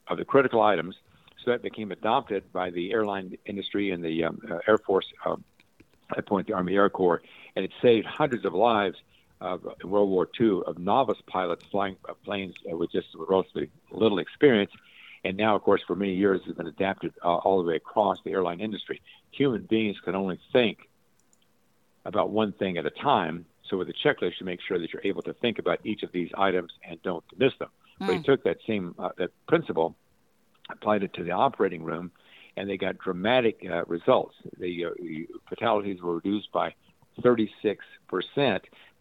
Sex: male